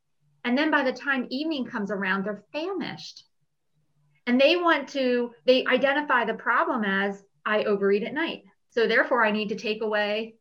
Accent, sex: American, female